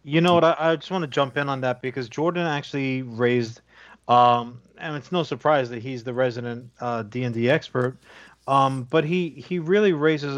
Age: 30-49